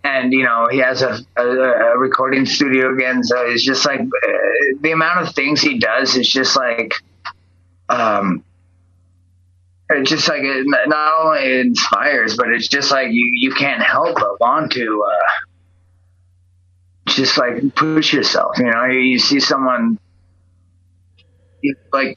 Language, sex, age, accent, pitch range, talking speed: English, male, 20-39, American, 90-135 Hz, 150 wpm